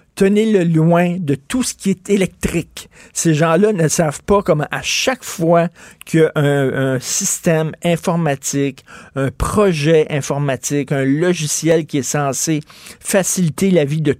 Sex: male